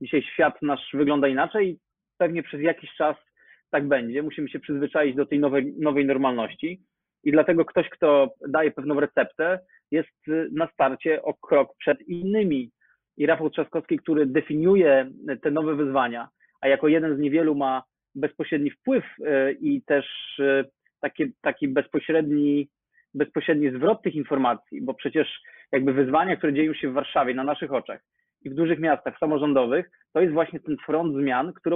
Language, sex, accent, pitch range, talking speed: Polish, male, native, 140-165 Hz, 155 wpm